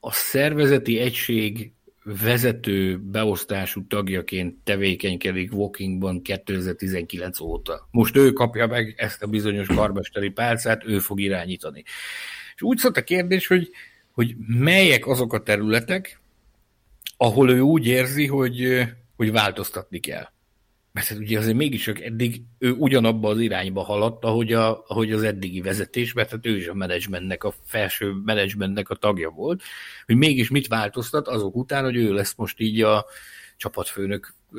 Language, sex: Hungarian, male